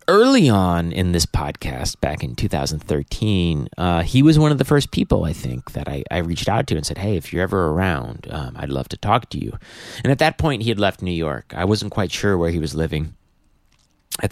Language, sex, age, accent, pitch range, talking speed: English, male, 30-49, American, 80-105 Hz, 235 wpm